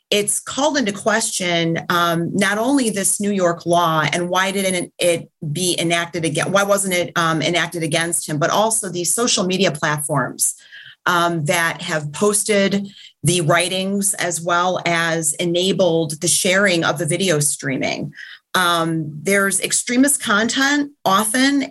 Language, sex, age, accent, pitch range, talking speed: English, female, 30-49, American, 170-210 Hz, 145 wpm